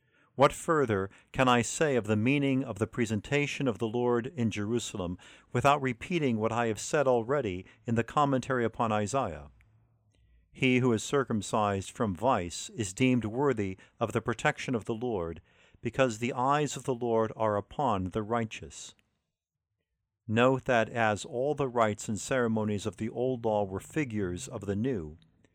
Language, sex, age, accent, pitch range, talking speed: English, male, 50-69, American, 105-130 Hz, 165 wpm